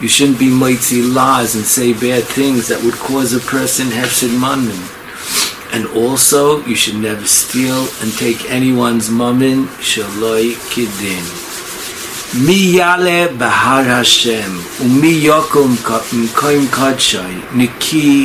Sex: male